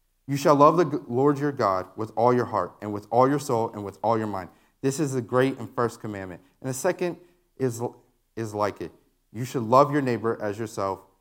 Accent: American